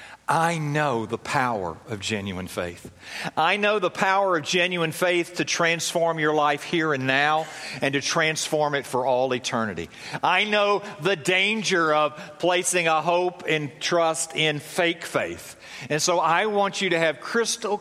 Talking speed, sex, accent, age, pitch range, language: 165 wpm, male, American, 50-69, 145-195 Hz, English